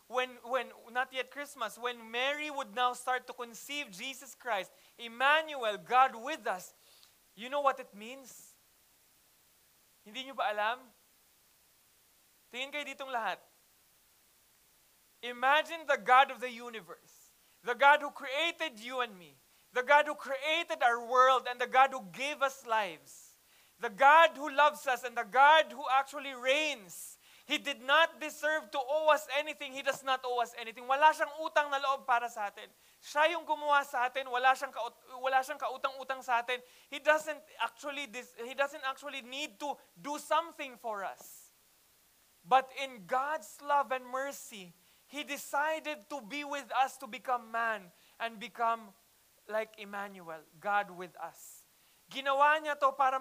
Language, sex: English, male